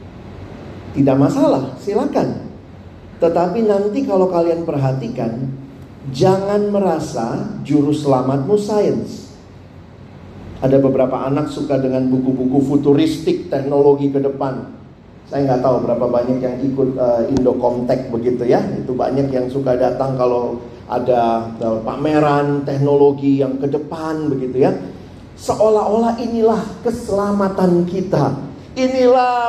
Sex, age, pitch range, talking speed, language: male, 40-59, 125-195 Hz, 110 wpm, Indonesian